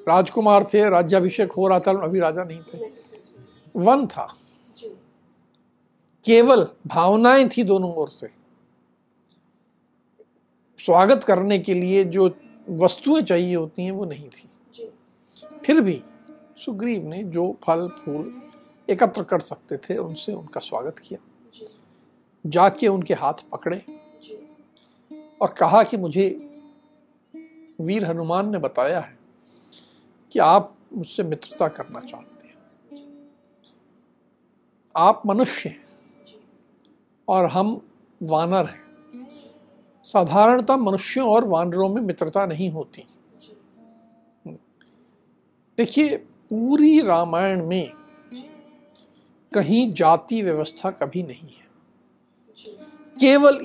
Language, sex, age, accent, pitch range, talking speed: Hindi, male, 50-69, native, 180-285 Hz, 100 wpm